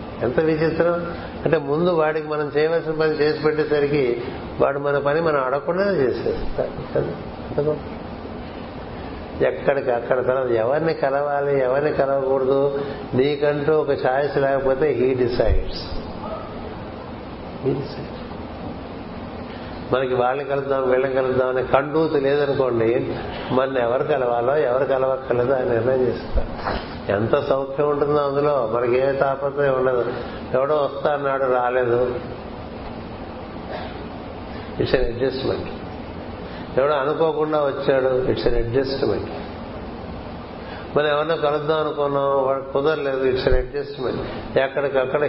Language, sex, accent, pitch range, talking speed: Telugu, male, native, 130-150 Hz, 100 wpm